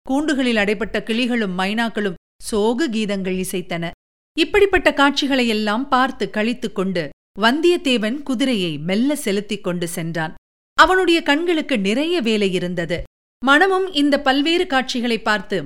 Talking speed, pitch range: 105 wpm, 215-275 Hz